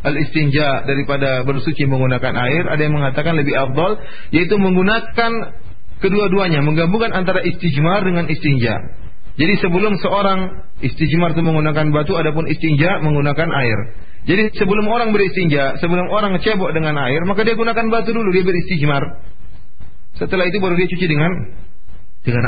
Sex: male